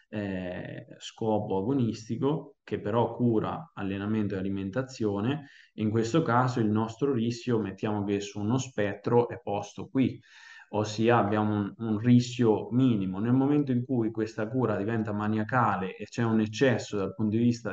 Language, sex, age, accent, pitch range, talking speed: Italian, male, 20-39, native, 105-125 Hz, 150 wpm